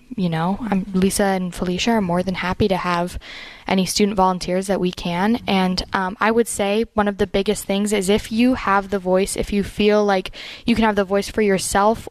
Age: 10-29